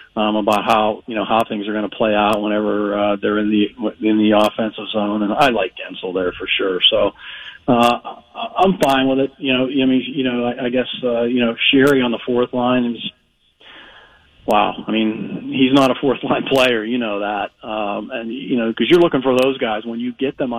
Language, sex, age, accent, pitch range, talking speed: English, male, 40-59, American, 110-130 Hz, 225 wpm